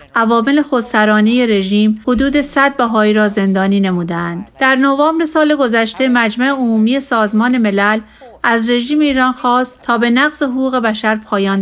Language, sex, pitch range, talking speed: Persian, female, 215-260 Hz, 140 wpm